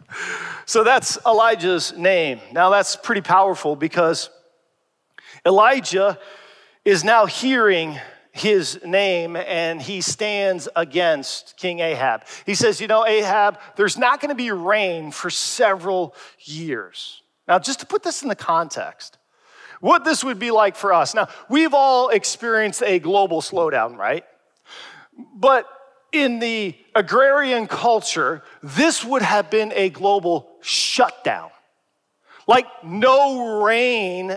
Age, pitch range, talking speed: 40-59, 190-255 Hz, 125 wpm